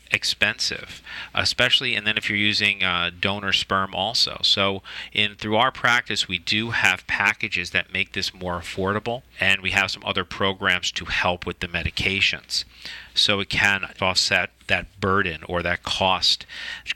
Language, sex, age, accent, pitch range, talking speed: English, male, 40-59, American, 95-105 Hz, 165 wpm